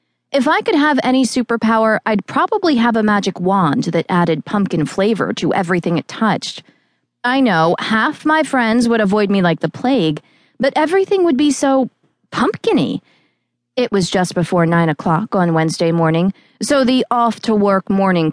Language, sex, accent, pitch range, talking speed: English, female, American, 175-255 Hz, 165 wpm